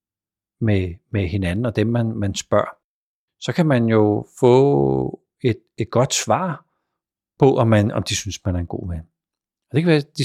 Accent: native